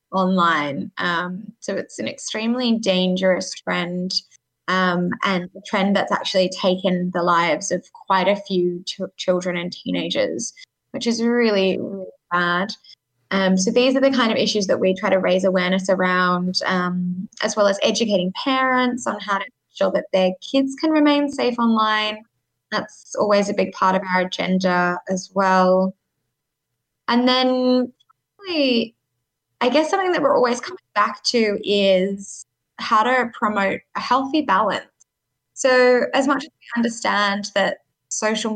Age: 10-29